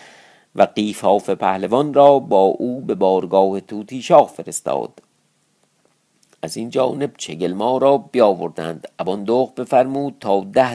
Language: Persian